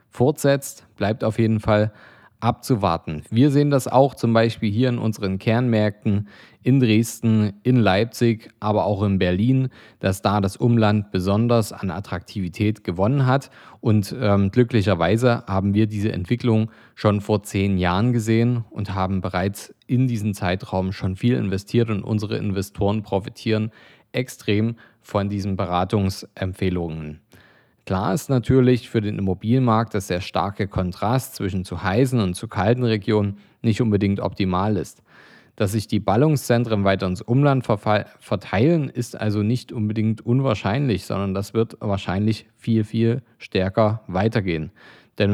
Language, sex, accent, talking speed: German, male, German, 140 wpm